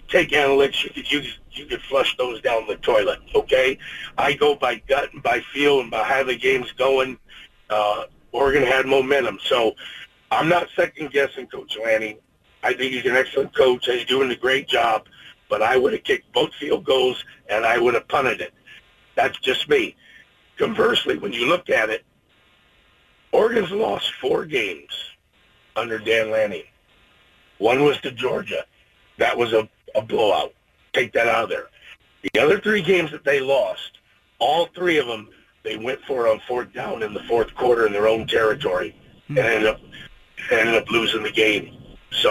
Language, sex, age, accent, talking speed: English, male, 50-69, American, 175 wpm